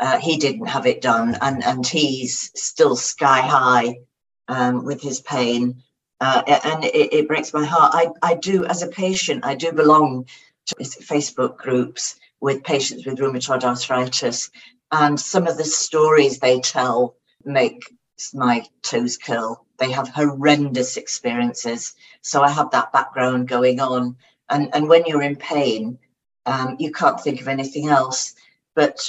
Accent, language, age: British, English, 50-69